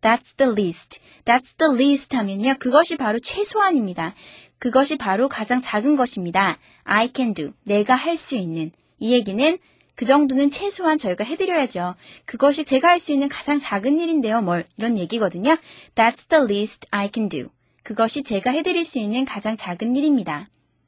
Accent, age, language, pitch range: native, 20-39, Korean, 210-295 Hz